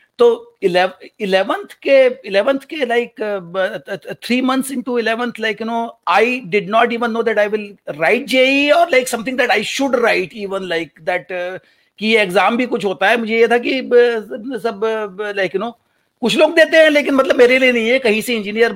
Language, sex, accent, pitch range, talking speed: Hindi, male, native, 195-245 Hz, 190 wpm